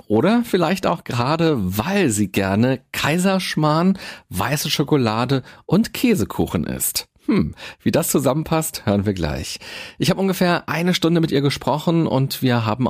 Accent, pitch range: German, 110-165 Hz